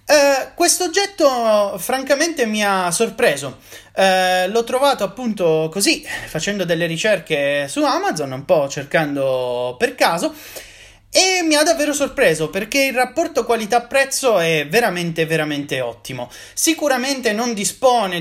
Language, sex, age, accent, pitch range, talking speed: Italian, male, 30-49, native, 145-240 Hz, 120 wpm